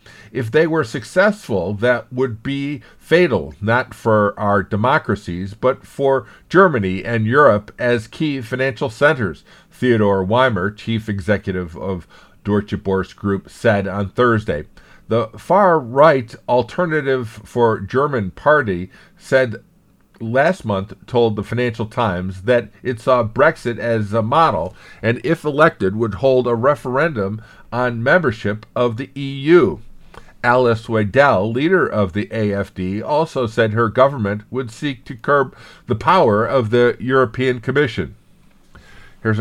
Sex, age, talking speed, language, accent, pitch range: male, 50-69, 130 wpm, English, American, 105-135 Hz